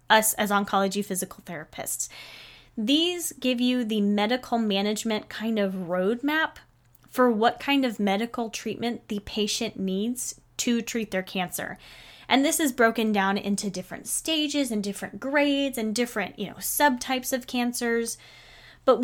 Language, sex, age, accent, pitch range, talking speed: English, female, 10-29, American, 195-245 Hz, 145 wpm